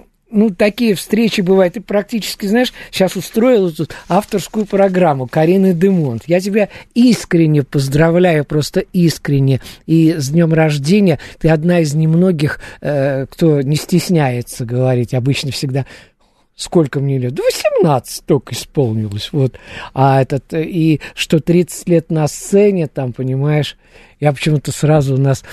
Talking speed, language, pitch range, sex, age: 130 wpm, Russian, 140-185 Hz, male, 50-69